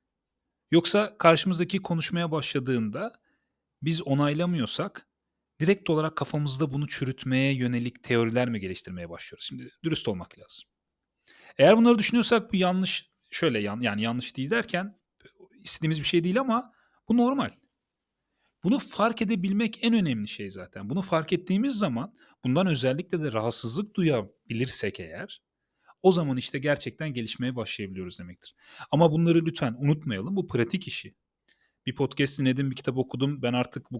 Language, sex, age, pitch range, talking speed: Turkish, male, 40-59, 120-180 Hz, 140 wpm